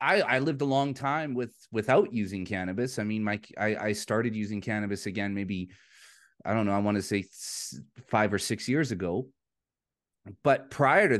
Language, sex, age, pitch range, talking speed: English, male, 30-49, 105-130 Hz, 190 wpm